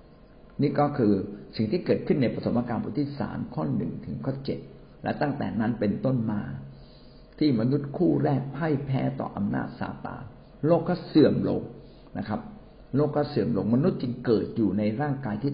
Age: 60-79